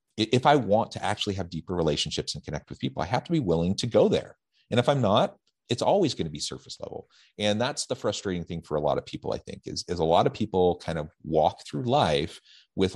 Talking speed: 255 wpm